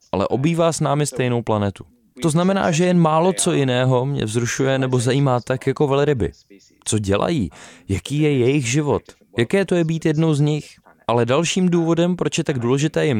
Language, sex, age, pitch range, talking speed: Czech, male, 20-39, 110-150 Hz, 185 wpm